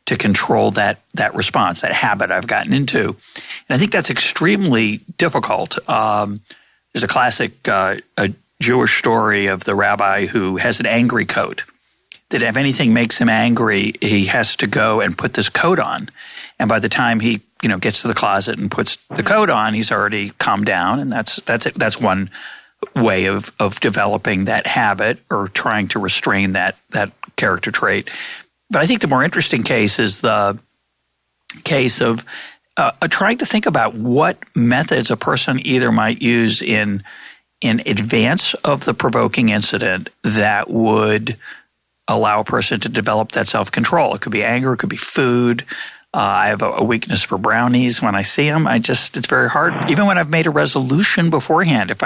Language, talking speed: English, 180 wpm